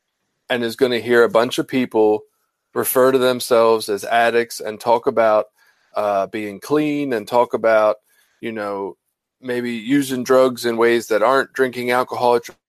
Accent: American